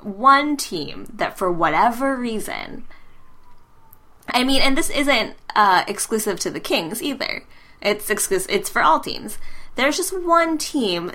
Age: 10-29